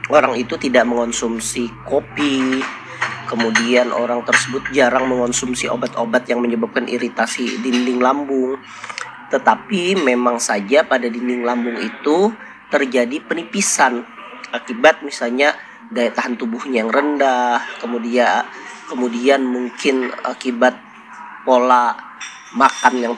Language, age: Indonesian, 30-49